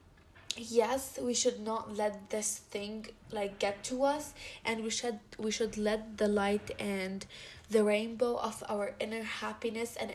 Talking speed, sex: 160 wpm, female